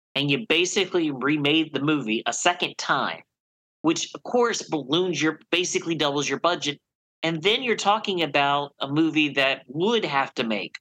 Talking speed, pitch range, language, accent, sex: 165 wpm, 135-180 Hz, English, American, male